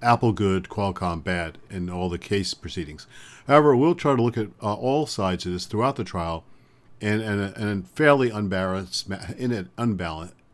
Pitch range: 95-120 Hz